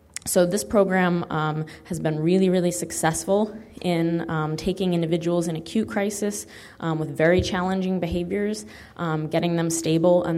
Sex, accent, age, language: female, American, 20-39, English